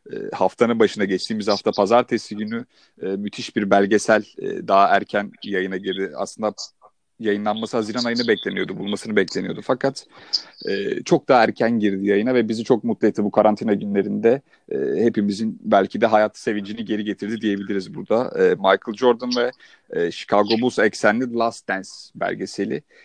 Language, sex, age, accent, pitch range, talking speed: Turkish, male, 30-49, native, 105-130 Hz, 135 wpm